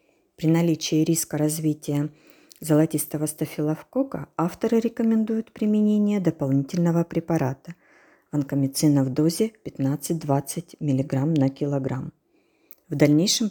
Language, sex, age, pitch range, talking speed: Ukrainian, female, 40-59, 145-195 Hz, 90 wpm